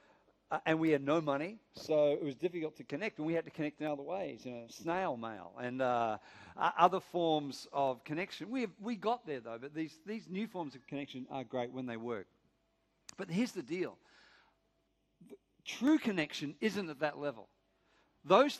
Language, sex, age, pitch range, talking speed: English, male, 50-69, 145-210 Hz, 190 wpm